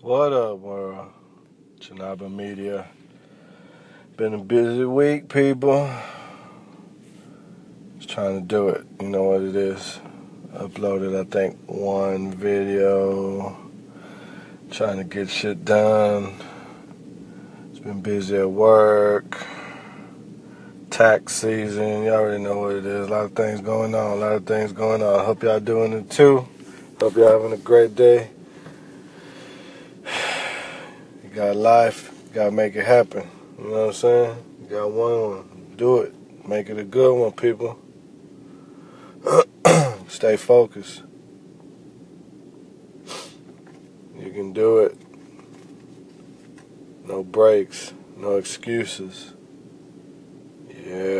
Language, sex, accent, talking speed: English, male, American, 120 wpm